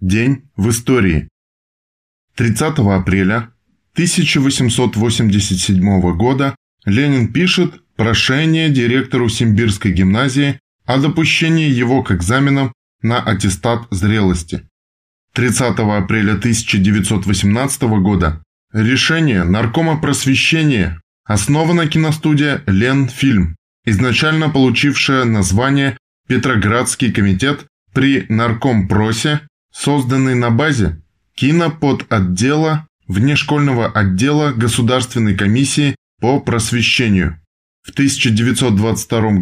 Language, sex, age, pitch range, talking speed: Russian, male, 20-39, 100-135 Hz, 80 wpm